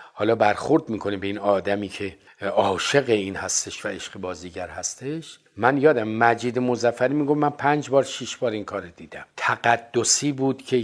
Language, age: Persian, 50-69